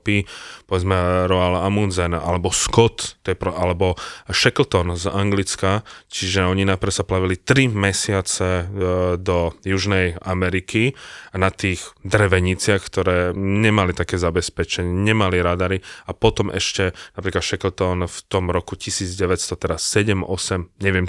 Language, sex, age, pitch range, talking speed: Slovak, male, 20-39, 85-95 Hz, 115 wpm